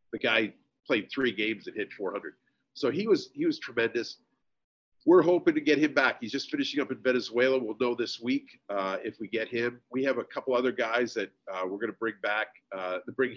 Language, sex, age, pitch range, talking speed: English, male, 50-69, 110-145 Hz, 220 wpm